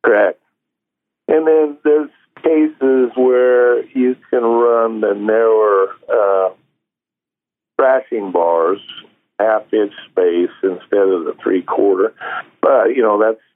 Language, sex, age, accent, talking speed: English, male, 50-69, American, 115 wpm